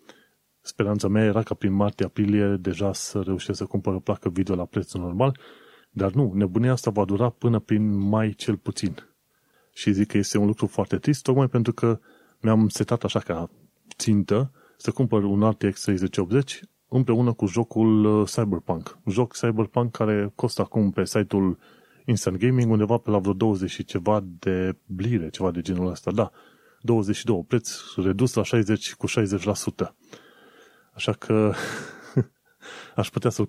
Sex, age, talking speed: male, 30-49, 160 wpm